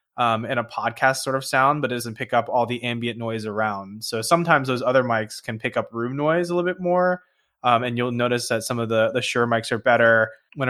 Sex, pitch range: male, 115-135 Hz